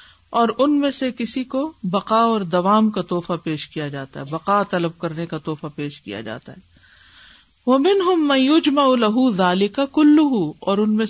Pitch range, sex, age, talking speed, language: 170-250 Hz, female, 50-69, 185 wpm, Urdu